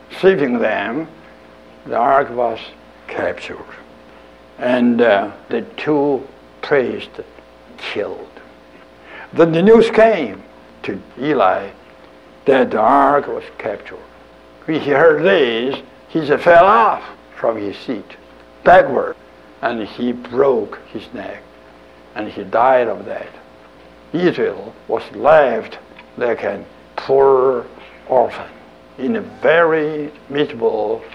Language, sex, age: English, male, 60-79